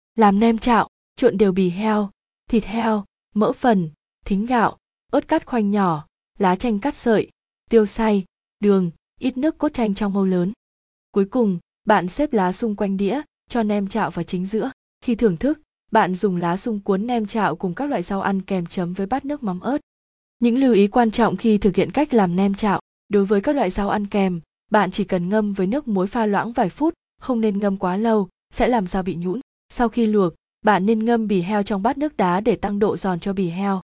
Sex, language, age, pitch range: female, Vietnamese, 20-39, 190-230 Hz